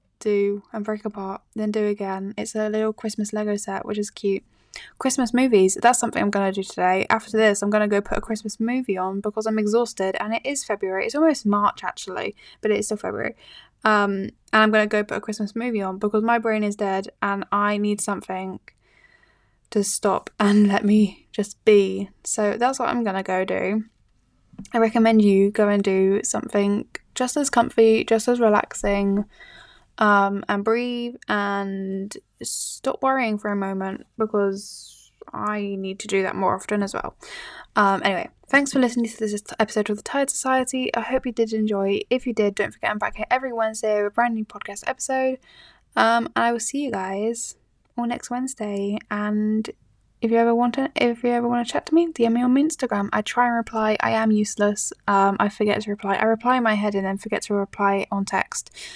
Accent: British